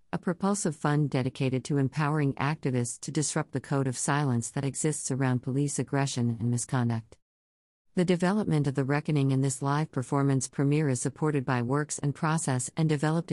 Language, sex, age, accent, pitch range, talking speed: English, female, 50-69, American, 125-155 Hz, 170 wpm